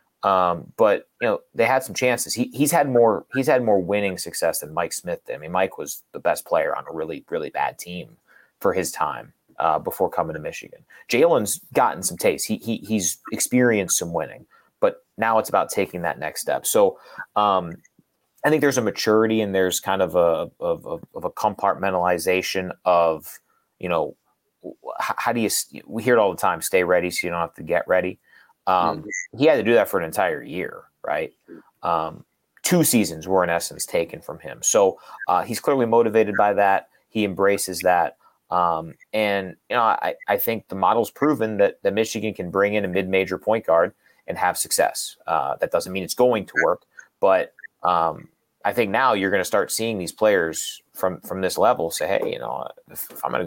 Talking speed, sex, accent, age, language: 210 wpm, male, American, 30-49, English